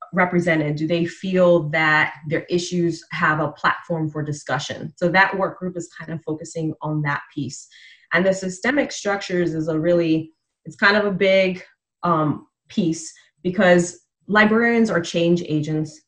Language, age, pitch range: English, 20-39, 155-180 Hz